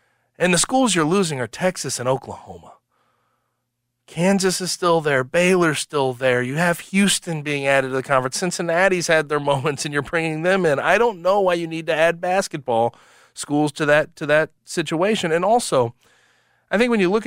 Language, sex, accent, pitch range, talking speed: English, male, American, 120-180 Hz, 190 wpm